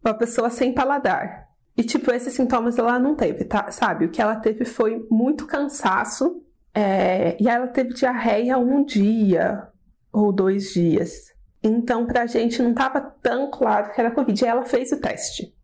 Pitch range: 210-275 Hz